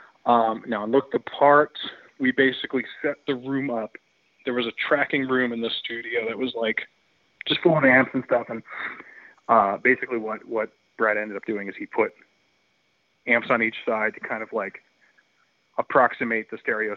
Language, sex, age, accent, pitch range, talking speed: English, male, 20-39, American, 110-135 Hz, 185 wpm